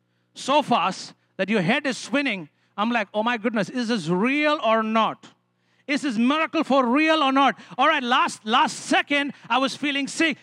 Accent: Indian